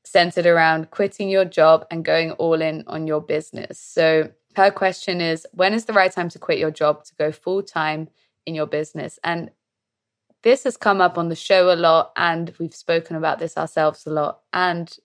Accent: British